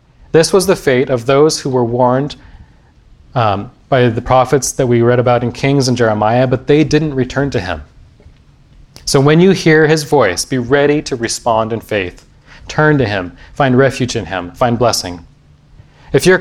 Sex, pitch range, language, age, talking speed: male, 120-145 Hz, English, 30-49, 185 wpm